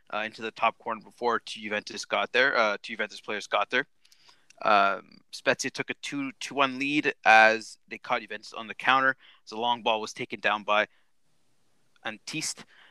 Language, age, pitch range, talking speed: English, 20-39, 110-125 Hz, 185 wpm